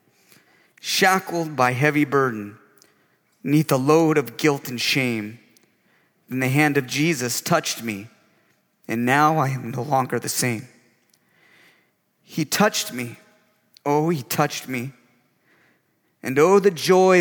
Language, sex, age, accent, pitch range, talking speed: English, male, 30-49, American, 120-155 Hz, 130 wpm